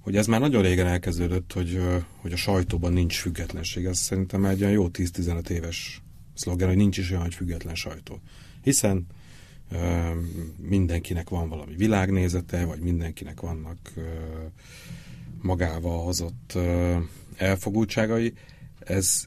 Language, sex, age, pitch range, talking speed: Hungarian, male, 30-49, 85-95 Hz, 135 wpm